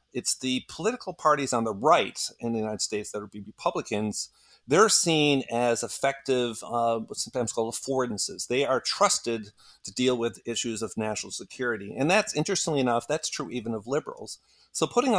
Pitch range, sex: 110-140 Hz, male